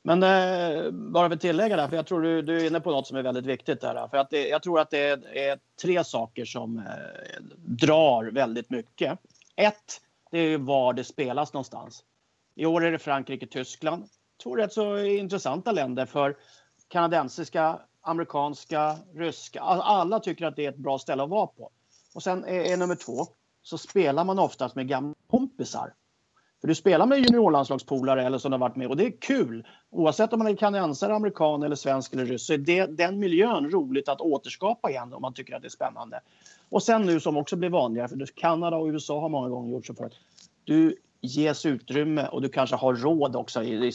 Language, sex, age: English, male, 30-49